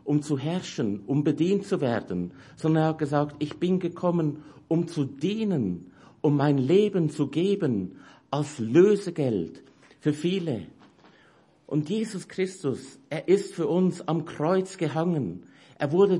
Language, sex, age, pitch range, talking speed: English, male, 50-69, 145-185 Hz, 140 wpm